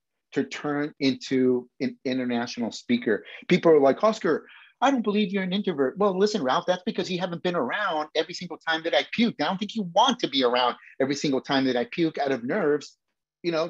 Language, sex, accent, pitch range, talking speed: English, male, American, 140-210 Hz, 220 wpm